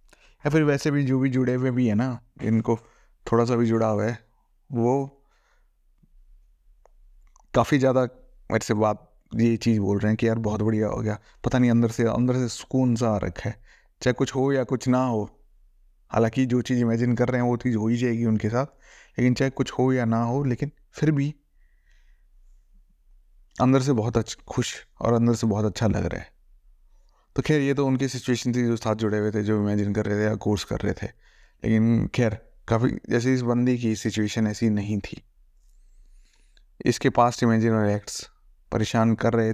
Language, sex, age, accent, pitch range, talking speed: Hindi, male, 20-39, native, 110-125 Hz, 195 wpm